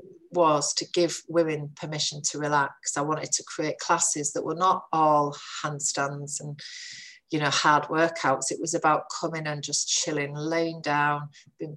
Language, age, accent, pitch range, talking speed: English, 40-59, British, 145-175 Hz, 165 wpm